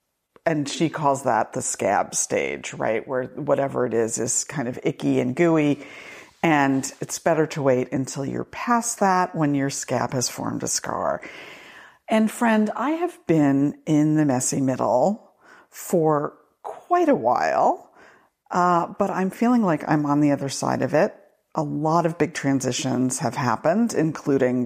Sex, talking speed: female, 165 wpm